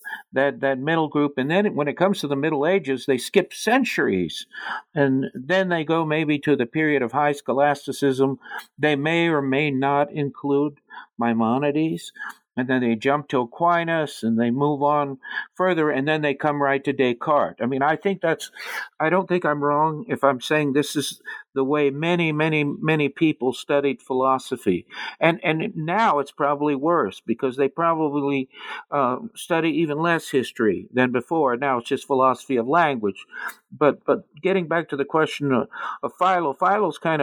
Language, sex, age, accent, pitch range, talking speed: English, male, 60-79, American, 135-160 Hz, 175 wpm